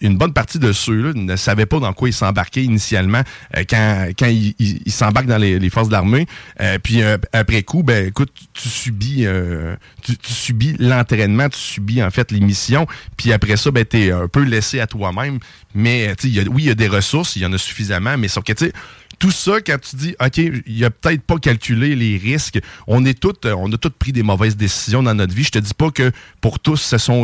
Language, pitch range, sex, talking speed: French, 105-135 Hz, male, 245 wpm